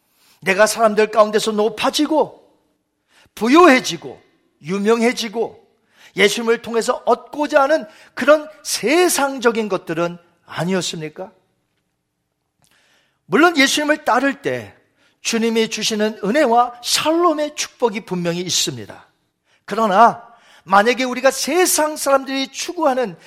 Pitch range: 185-275 Hz